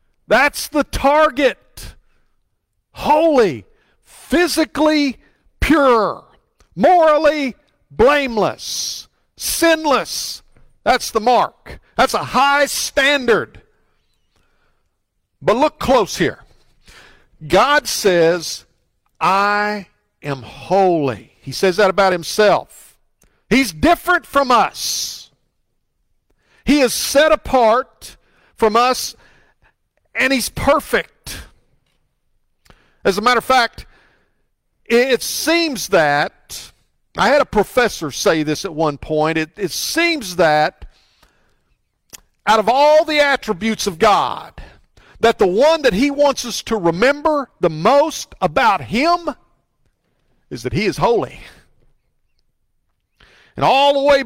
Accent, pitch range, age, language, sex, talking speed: American, 195-295 Hz, 50-69, English, male, 105 wpm